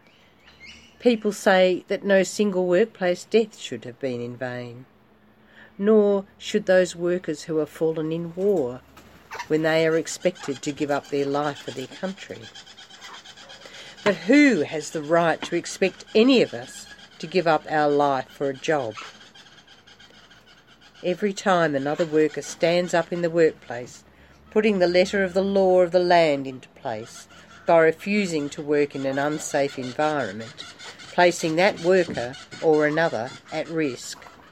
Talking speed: 150 wpm